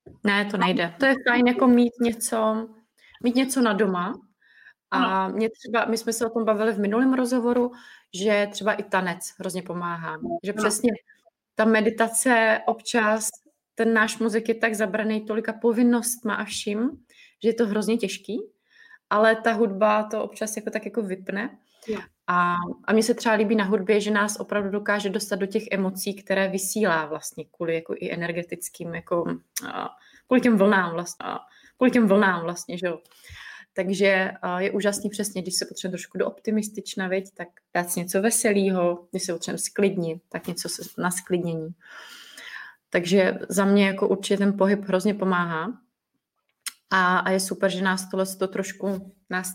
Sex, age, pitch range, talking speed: female, 20-39, 190-225 Hz, 160 wpm